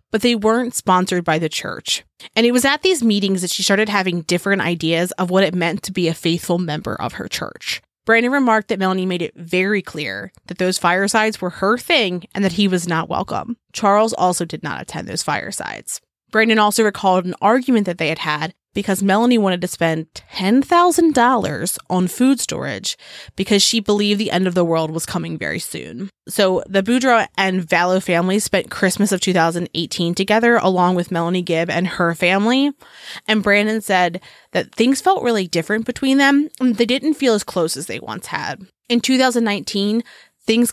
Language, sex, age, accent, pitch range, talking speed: English, female, 20-39, American, 175-220 Hz, 190 wpm